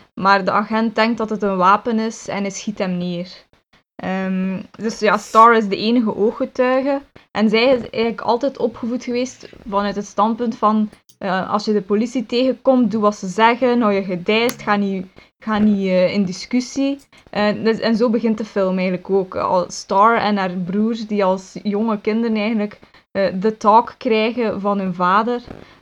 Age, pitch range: 10-29, 200-235 Hz